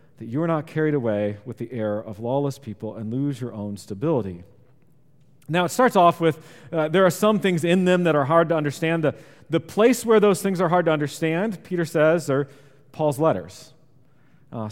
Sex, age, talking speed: male, 40-59, 205 wpm